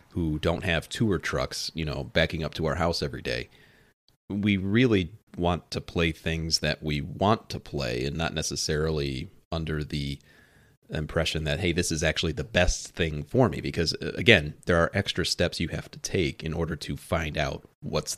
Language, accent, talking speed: English, American, 190 wpm